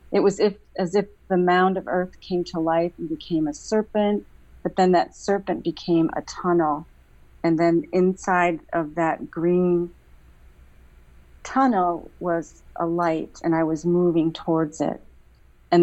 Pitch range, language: 125-180 Hz, English